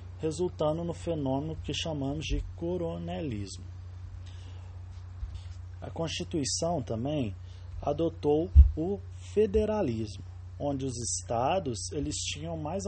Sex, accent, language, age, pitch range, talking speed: male, Brazilian, English, 20-39, 90-140 Hz, 85 wpm